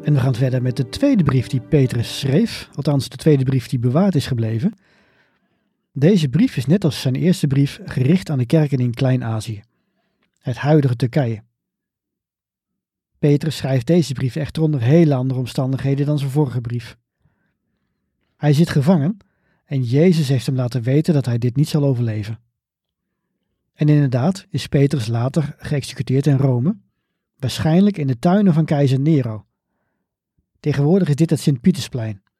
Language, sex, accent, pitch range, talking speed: Dutch, male, Dutch, 130-160 Hz, 155 wpm